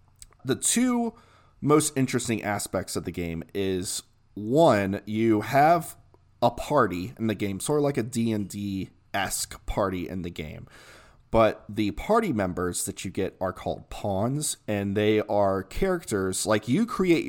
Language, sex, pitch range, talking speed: English, male, 100-135 Hz, 155 wpm